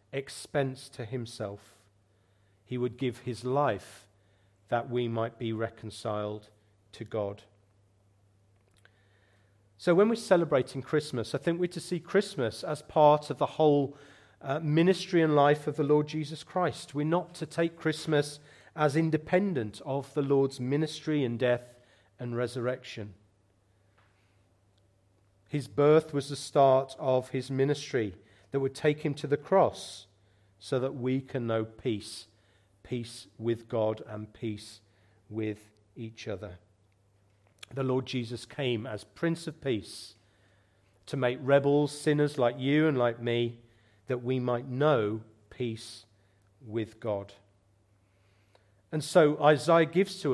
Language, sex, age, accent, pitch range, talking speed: English, male, 40-59, British, 105-145 Hz, 135 wpm